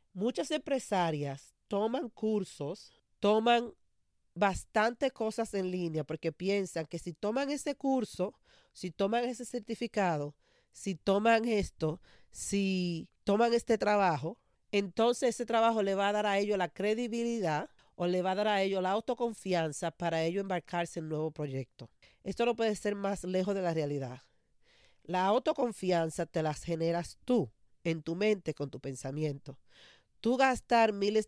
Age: 40-59